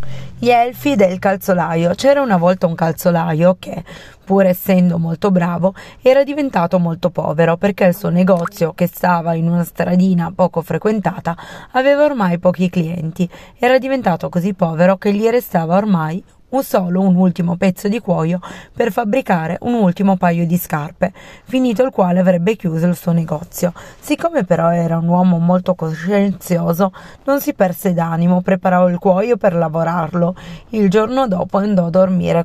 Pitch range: 175-200 Hz